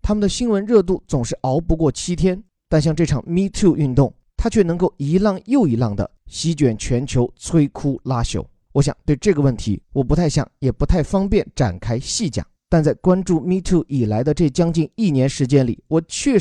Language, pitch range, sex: Chinese, 130-180 Hz, male